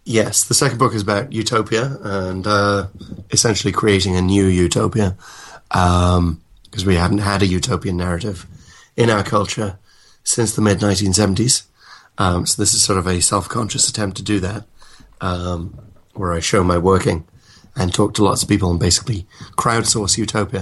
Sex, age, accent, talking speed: male, 30-49, British, 160 wpm